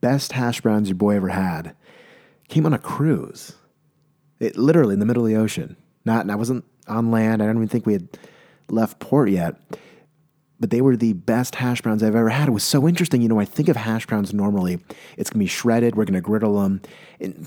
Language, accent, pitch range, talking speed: English, American, 110-150 Hz, 245 wpm